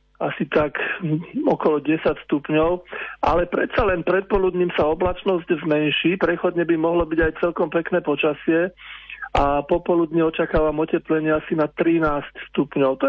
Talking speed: 135 wpm